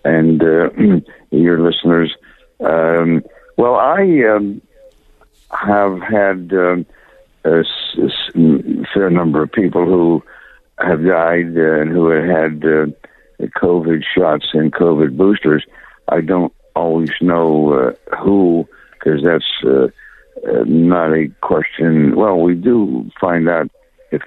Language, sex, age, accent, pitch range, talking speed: English, male, 60-79, American, 75-90 Hz, 120 wpm